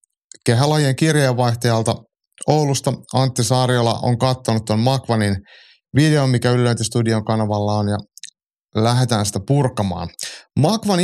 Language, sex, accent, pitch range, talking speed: Finnish, male, native, 110-140 Hz, 105 wpm